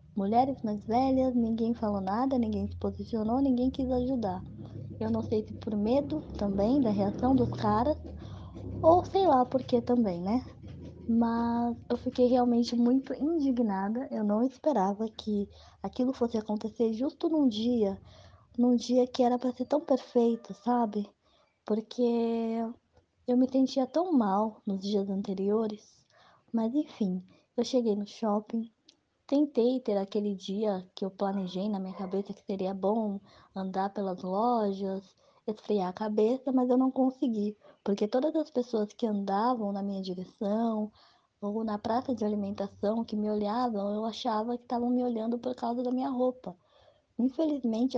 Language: Portuguese